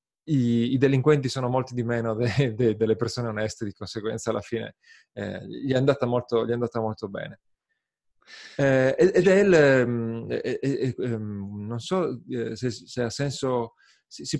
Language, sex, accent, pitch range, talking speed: Italian, male, native, 110-130 Hz, 165 wpm